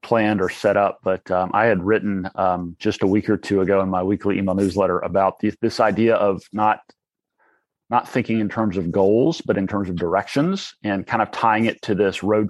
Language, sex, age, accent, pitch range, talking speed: English, male, 30-49, American, 95-110 Hz, 220 wpm